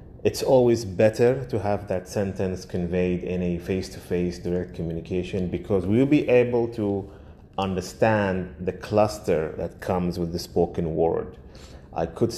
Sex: male